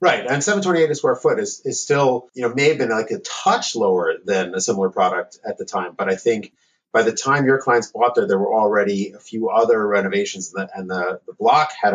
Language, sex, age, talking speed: English, male, 30-49, 230 wpm